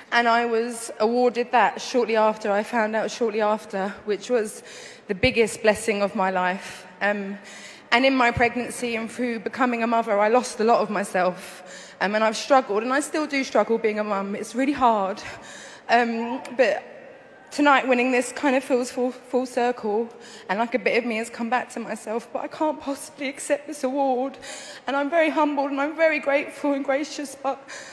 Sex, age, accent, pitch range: female, 20-39, British, 235-310 Hz